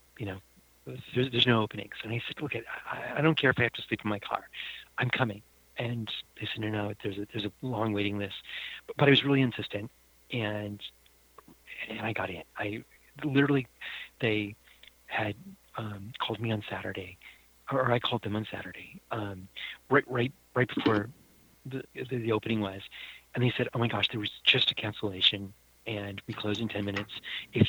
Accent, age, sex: American, 40-59, male